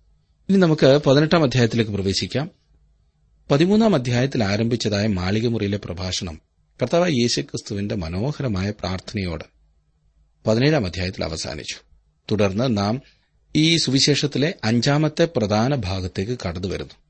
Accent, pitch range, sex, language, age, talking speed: native, 95-120 Hz, male, Malayalam, 30-49, 90 wpm